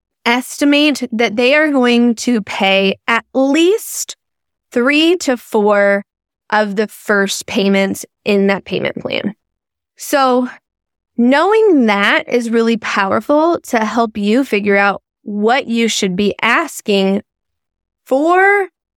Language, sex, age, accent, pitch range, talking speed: English, female, 20-39, American, 195-255 Hz, 115 wpm